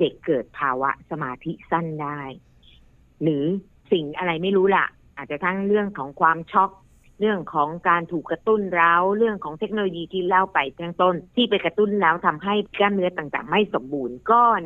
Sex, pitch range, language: female, 145-195 Hz, Thai